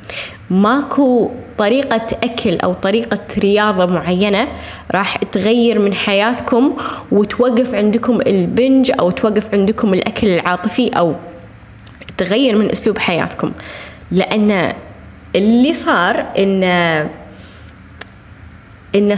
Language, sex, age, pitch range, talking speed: Arabic, female, 20-39, 190-250 Hz, 90 wpm